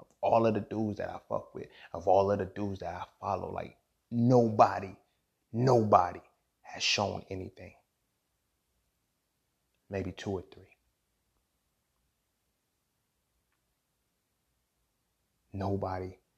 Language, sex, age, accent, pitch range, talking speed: English, male, 30-49, American, 85-100 Hz, 100 wpm